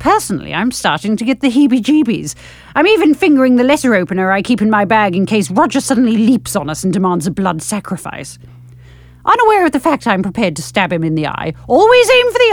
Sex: female